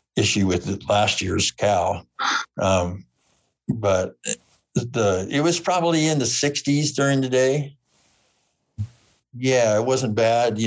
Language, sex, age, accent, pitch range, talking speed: English, male, 60-79, American, 95-120 Hz, 130 wpm